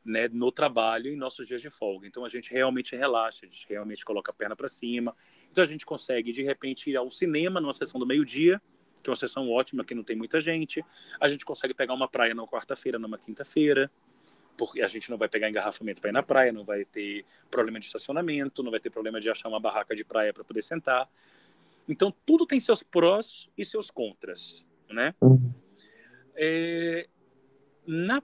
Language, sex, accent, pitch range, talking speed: Portuguese, male, Brazilian, 125-185 Hz, 205 wpm